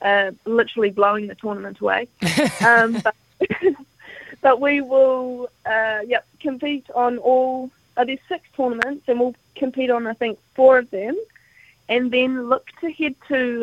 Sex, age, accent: female, 20-39, Australian